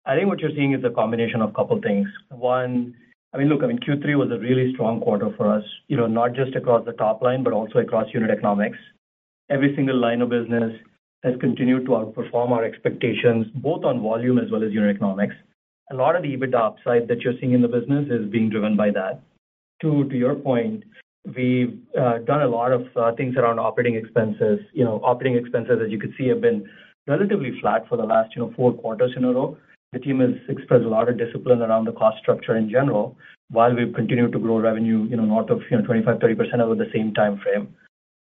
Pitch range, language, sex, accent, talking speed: 120-140 Hz, English, male, Indian, 230 wpm